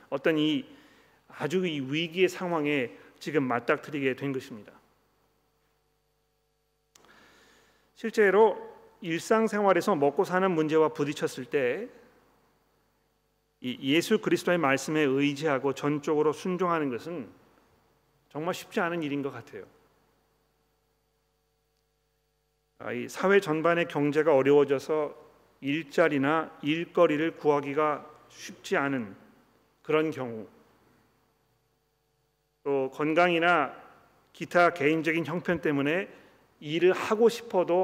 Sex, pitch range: male, 145-180 Hz